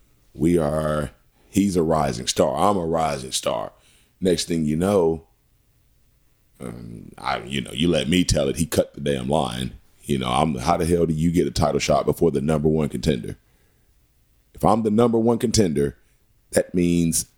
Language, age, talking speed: English, 40-59, 185 wpm